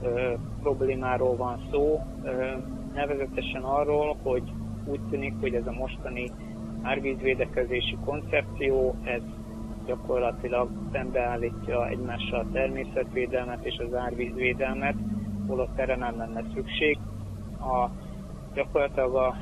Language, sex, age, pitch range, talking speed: Hungarian, male, 30-49, 110-130 Hz, 100 wpm